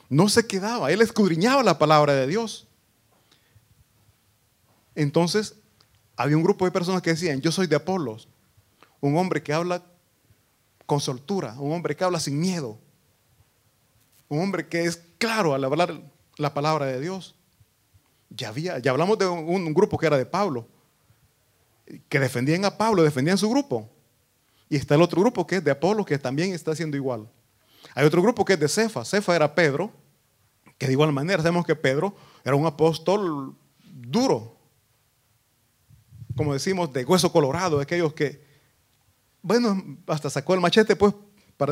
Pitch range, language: 130-180 Hz, Italian